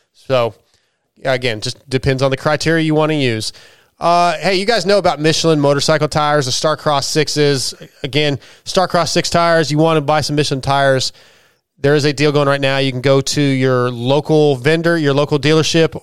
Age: 30-49